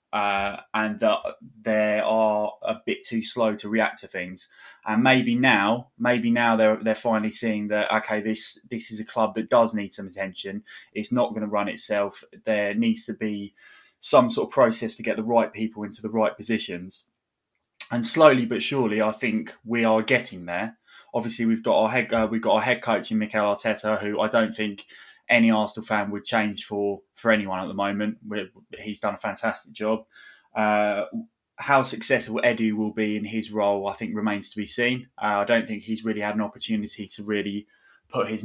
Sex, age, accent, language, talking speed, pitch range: male, 20-39, British, English, 205 wpm, 105-115 Hz